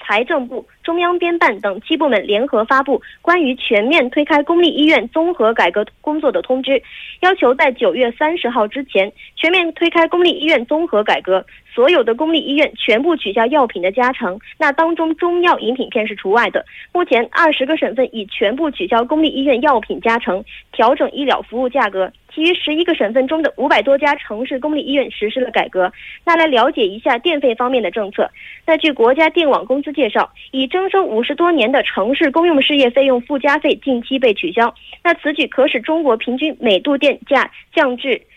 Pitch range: 245-320 Hz